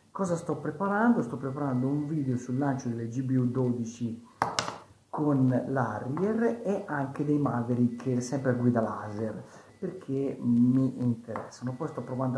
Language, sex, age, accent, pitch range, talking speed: Italian, male, 50-69, native, 120-180 Hz, 130 wpm